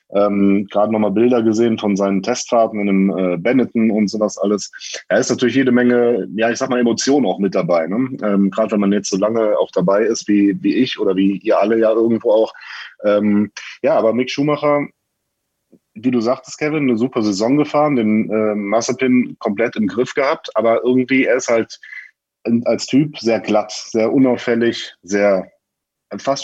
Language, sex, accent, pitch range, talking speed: German, male, German, 100-125 Hz, 190 wpm